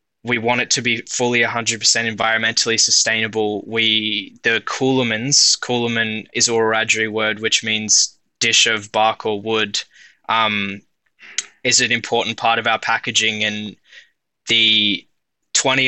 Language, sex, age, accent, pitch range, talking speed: English, male, 10-29, Australian, 110-115 Hz, 140 wpm